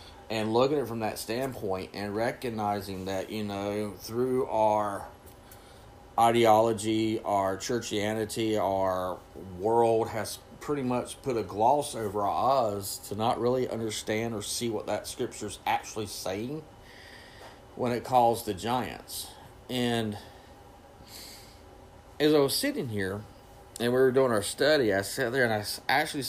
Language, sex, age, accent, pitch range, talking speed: English, male, 40-59, American, 100-120 Hz, 140 wpm